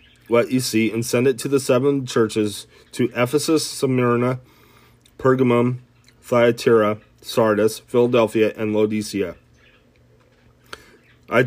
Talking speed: 105 wpm